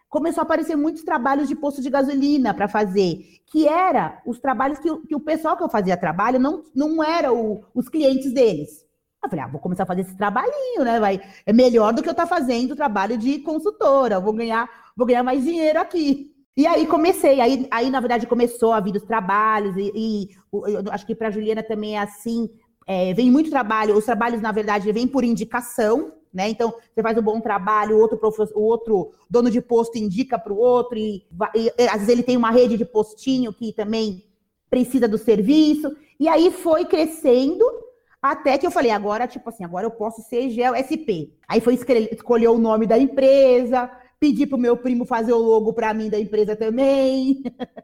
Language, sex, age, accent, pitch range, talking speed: Portuguese, female, 30-49, Brazilian, 215-270 Hz, 205 wpm